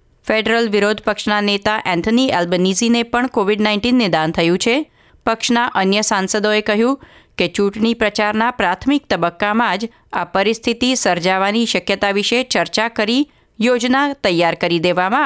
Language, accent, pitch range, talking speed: Gujarati, native, 175-230 Hz, 130 wpm